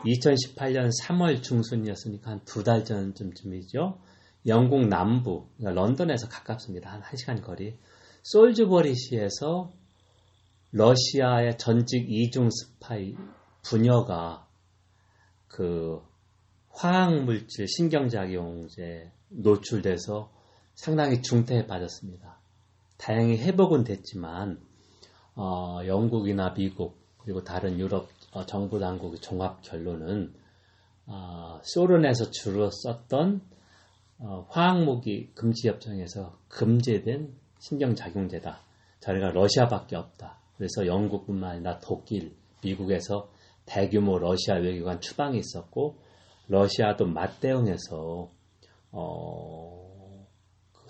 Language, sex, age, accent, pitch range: Korean, male, 40-59, native, 95-120 Hz